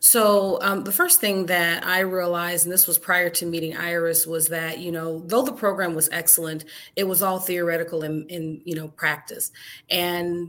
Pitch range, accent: 155-175 Hz, American